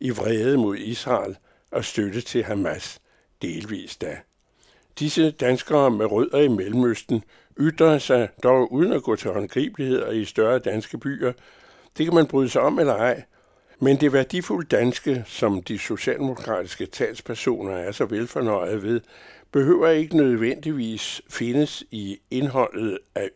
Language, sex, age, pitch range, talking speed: Danish, male, 60-79, 115-140 Hz, 145 wpm